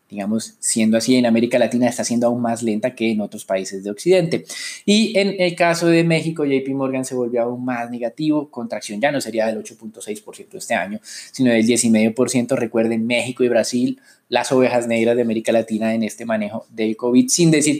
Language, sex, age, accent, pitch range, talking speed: Spanish, male, 20-39, Colombian, 115-130 Hz, 195 wpm